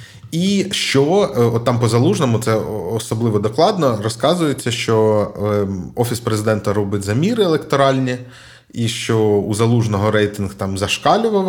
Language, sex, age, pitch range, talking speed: Ukrainian, male, 20-39, 105-135 Hz, 120 wpm